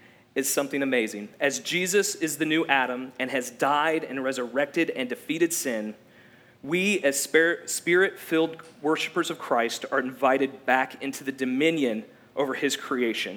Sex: male